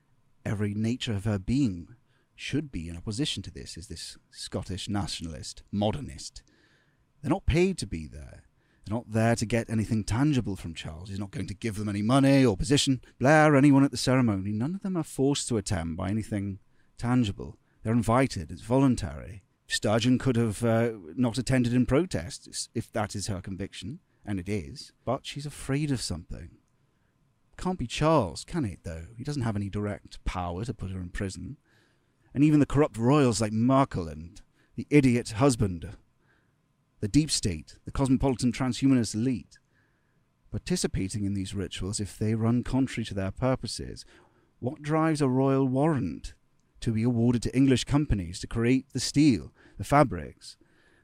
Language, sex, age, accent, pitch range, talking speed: English, male, 30-49, British, 105-135 Hz, 170 wpm